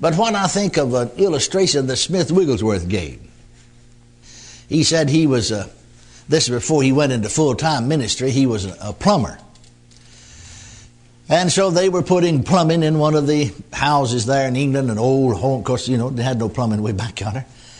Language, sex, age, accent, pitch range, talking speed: English, male, 60-79, American, 120-180 Hz, 190 wpm